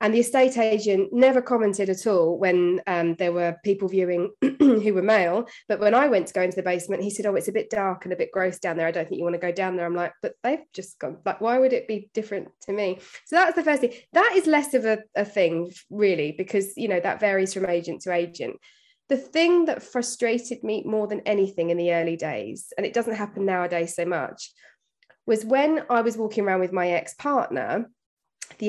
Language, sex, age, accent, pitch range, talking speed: English, female, 20-39, British, 185-250 Hz, 240 wpm